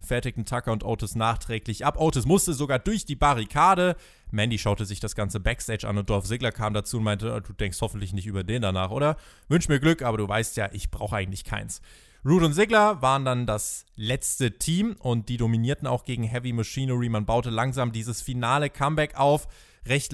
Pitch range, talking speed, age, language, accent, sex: 115-160 Hz, 205 wpm, 20-39, German, German, male